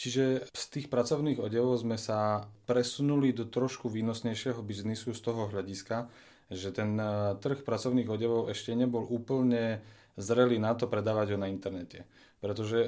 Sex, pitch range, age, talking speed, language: male, 105-120 Hz, 30-49, 145 wpm, Slovak